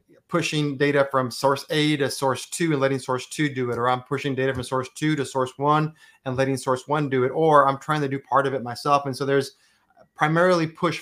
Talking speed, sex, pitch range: 240 wpm, male, 135-170 Hz